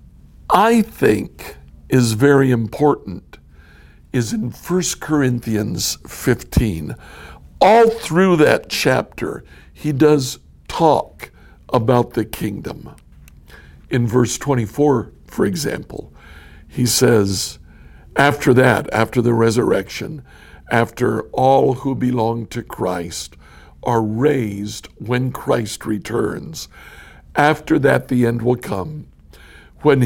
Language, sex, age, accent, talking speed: English, male, 60-79, American, 100 wpm